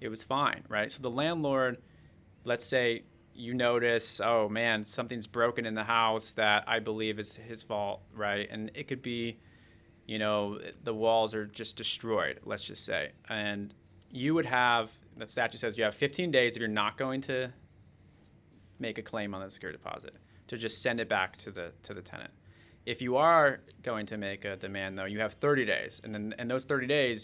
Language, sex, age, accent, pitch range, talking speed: English, male, 30-49, American, 105-125 Hz, 200 wpm